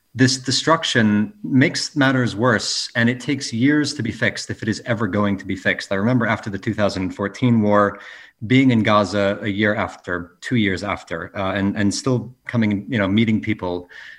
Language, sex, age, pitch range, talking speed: English, male, 30-49, 95-110 Hz, 185 wpm